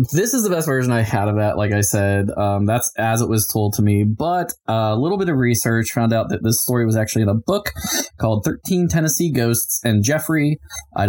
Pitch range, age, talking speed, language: 100-120 Hz, 20-39, 235 wpm, English